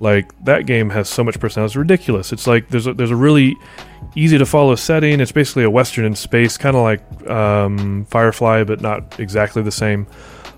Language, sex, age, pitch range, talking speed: English, male, 30-49, 110-140 Hz, 185 wpm